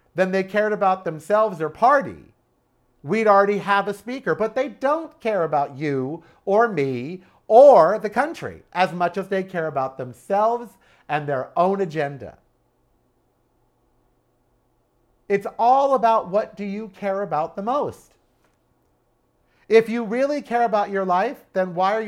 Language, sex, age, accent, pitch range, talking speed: English, male, 50-69, American, 155-225 Hz, 145 wpm